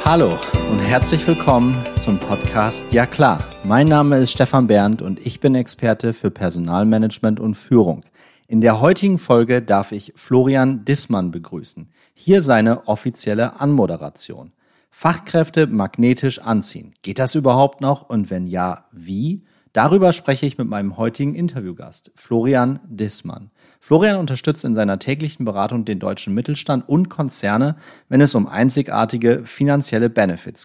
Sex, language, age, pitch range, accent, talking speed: male, German, 40-59, 110-145 Hz, German, 140 wpm